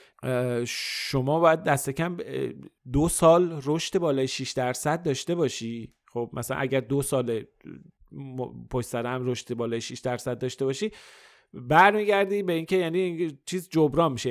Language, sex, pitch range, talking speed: Persian, male, 125-160 Hz, 140 wpm